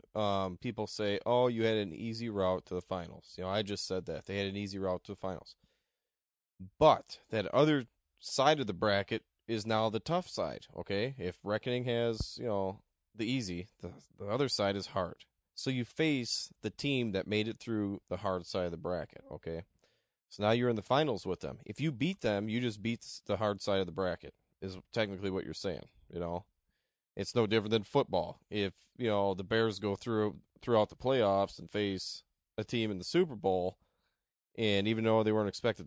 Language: English